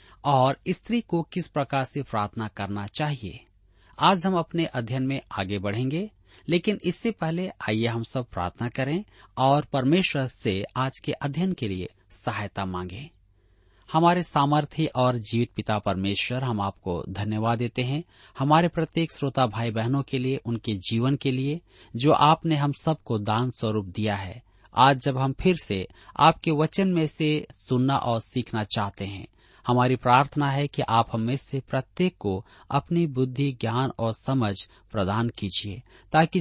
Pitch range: 105-150 Hz